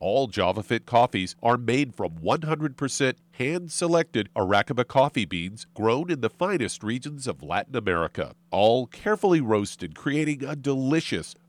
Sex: male